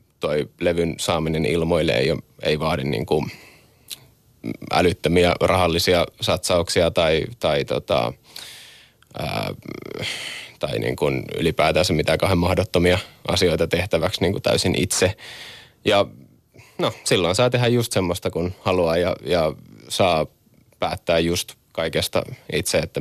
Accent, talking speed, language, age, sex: native, 105 wpm, Finnish, 20-39, male